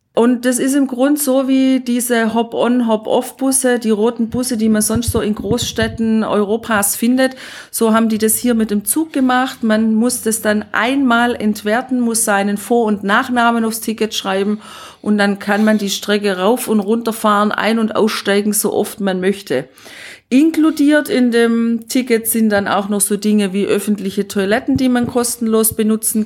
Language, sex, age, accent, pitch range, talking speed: German, female, 40-59, German, 205-245 Hz, 175 wpm